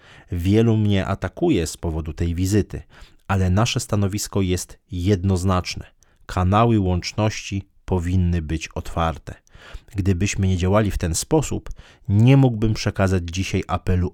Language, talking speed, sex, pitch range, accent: Polish, 120 wpm, male, 90-110 Hz, native